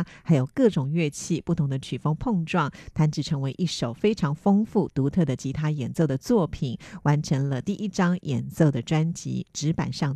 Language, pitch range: Chinese, 140-185 Hz